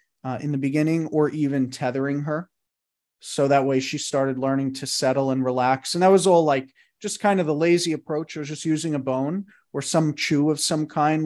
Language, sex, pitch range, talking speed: English, male, 130-155 Hz, 220 wpm